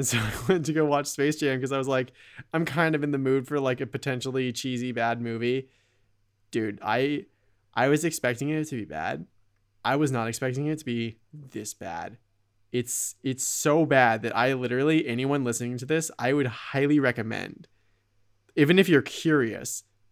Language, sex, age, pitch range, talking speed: English, male, 20-39, 120-145 Hz, 190 wpm